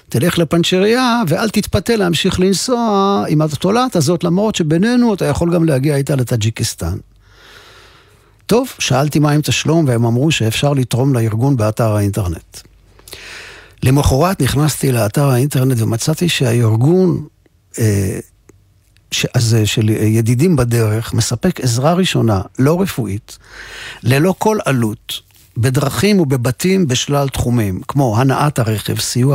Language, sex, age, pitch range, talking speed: Hebrew, male, 50-69, 115-160 Hz, 120 wpm